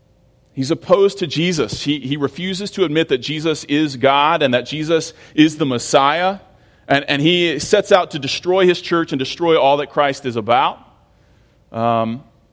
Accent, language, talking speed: American, English, 170 wpm